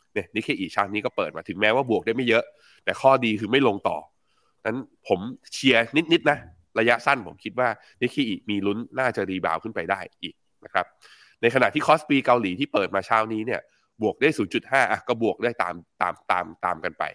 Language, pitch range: Thai, 95-125 Hz